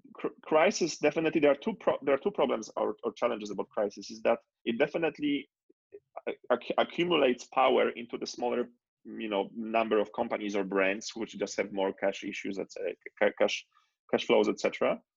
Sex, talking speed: male, 180 wpm